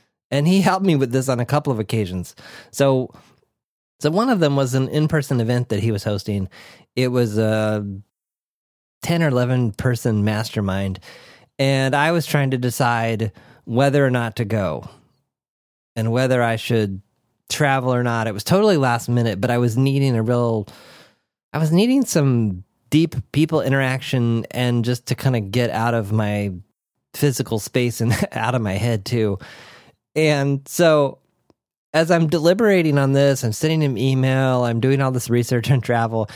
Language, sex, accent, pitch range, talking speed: English, male, American, 115-155 Hz, 170 wpm